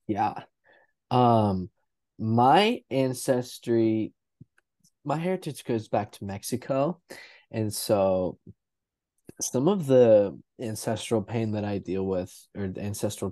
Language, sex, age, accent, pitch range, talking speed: English, male, 20-39, American, 105-130 Hz, 110 wpm